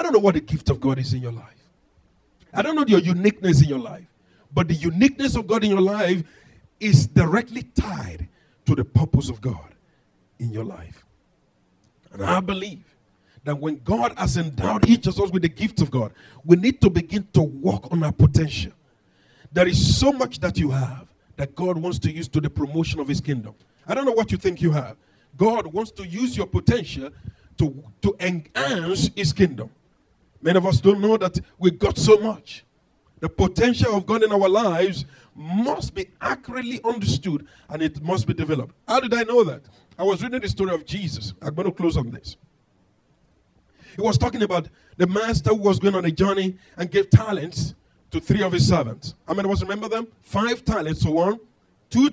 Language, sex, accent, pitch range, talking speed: English, male, Nigerian, 140-200 Hz, 200 wpm